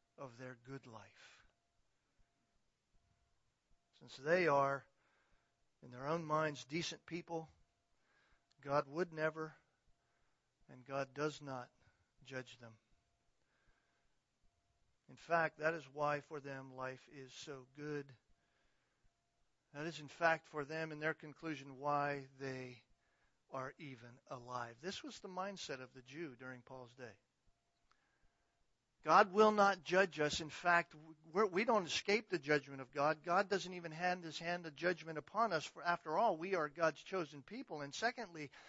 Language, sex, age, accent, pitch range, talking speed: English, male, 40-59, American, 135-200 Hz, 140 wpm